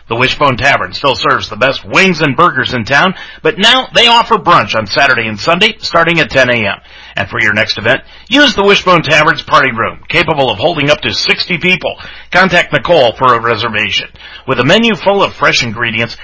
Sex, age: male, 40-59